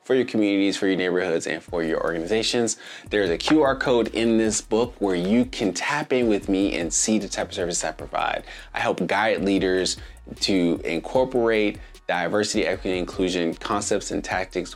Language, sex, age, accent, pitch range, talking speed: English, male, 30-49, American, 90-105 Hz, 185 wpm